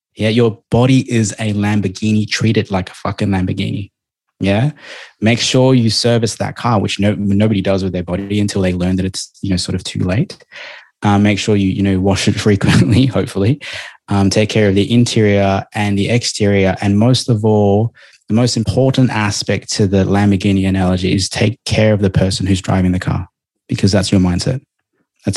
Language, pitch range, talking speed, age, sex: English, 95-110 Hz, 195 wpm, 20-39, male